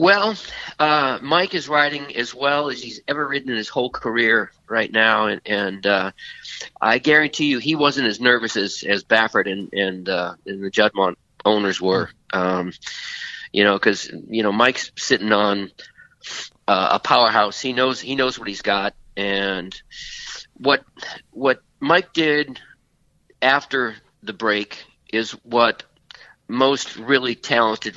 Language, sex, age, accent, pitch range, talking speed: English, male, 40-59, American, 110-150 Hz, 150 wpm